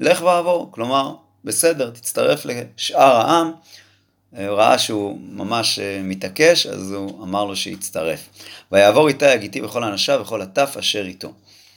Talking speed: 125 wpm